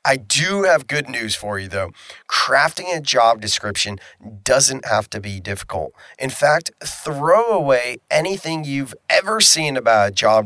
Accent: American